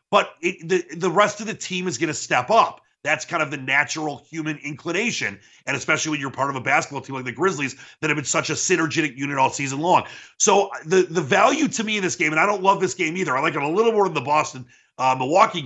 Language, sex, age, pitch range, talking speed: English, male, 30-49, 130-175 Hz, 265 wpm